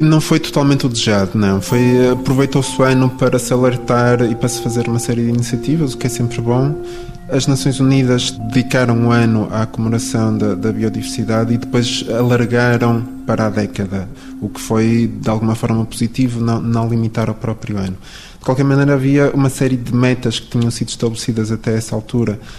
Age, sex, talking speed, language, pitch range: 20-39, male, 185 wpm, Portuguese, 110-130 Hz